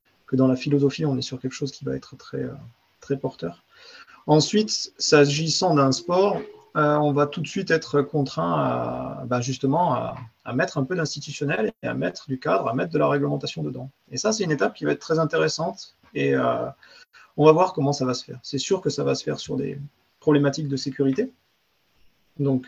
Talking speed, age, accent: 210 wpm, 30-49, French